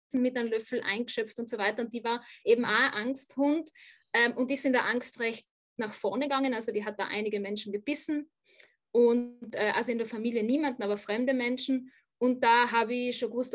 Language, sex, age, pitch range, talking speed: German, female, 20-39, 220-265 Hz, 205 wpm